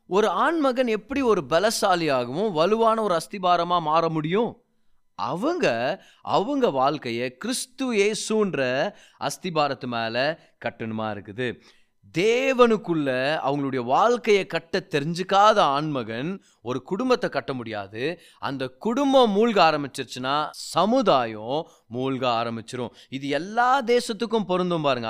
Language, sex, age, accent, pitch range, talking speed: Tamil, male, 30-49, native, 135-210 Hz, 95 wpm